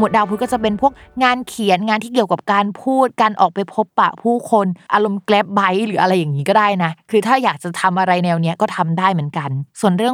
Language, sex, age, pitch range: Thai, female, 20-39, 180-230 Hz